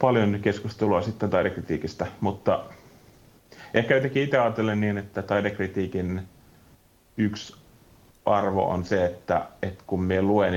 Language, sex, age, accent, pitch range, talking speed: Finnish, male, 30-49, native, 85-100 Hz, 120 wpm